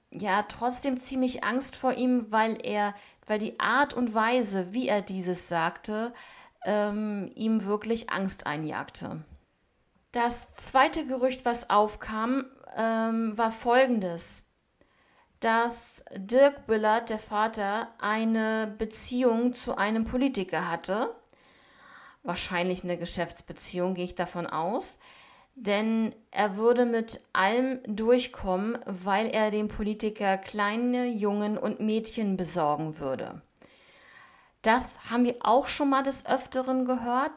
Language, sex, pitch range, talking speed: German, female, 205-250 Hz, 115 wpm